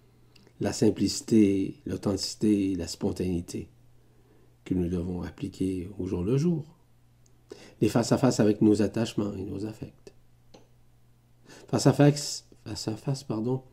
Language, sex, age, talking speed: French, male, 50-69, 95 wpm